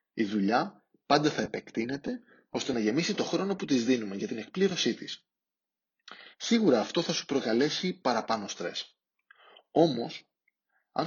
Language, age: Greek, 20-39